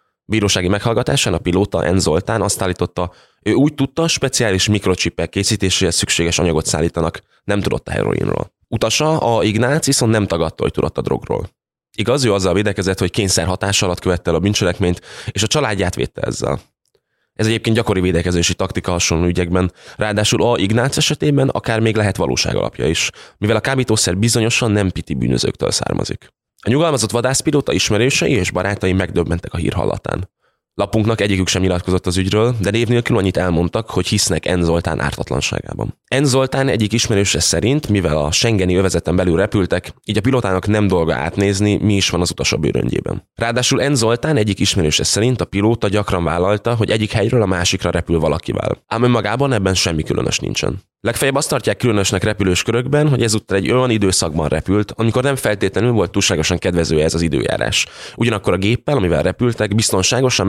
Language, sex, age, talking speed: Hungarian, male, 20-39, 165 wpm